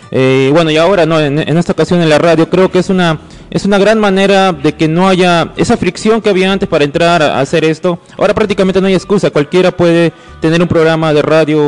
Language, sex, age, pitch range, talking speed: Spanish, male, 20-39, 140-180 Hz, 240 wpm